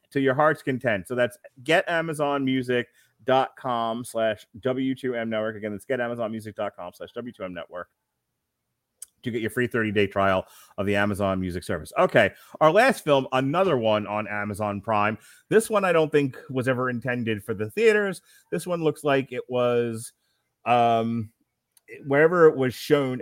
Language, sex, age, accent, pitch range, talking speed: English, male, 30-49, American, 110-130 Hz, 150 wpm